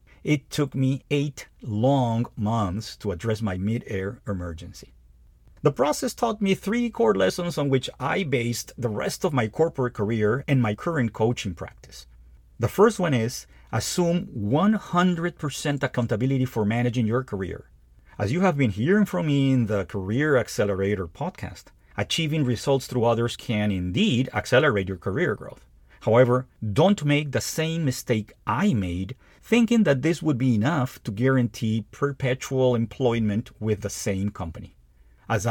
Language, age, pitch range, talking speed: English, 50-69, 100-145 Hz, 150 wpm